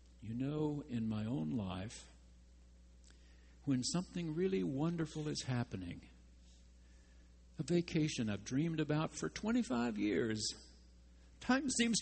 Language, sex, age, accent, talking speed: English, male, 60-79, American, 110 wpm